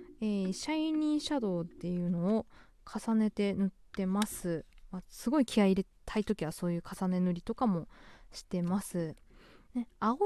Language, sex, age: Japanese, female, 20-39